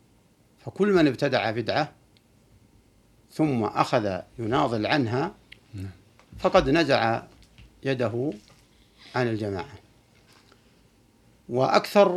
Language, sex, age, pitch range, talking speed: Arabic, male, 60-79, 110-140 Hz, 70 wpm